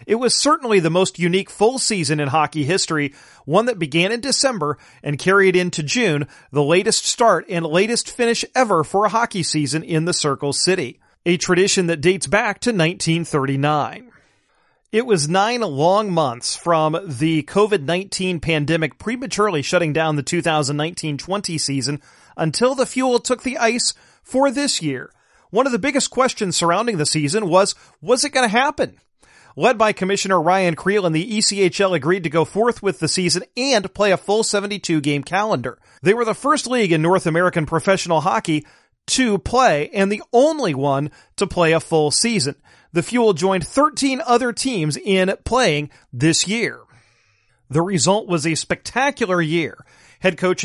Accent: American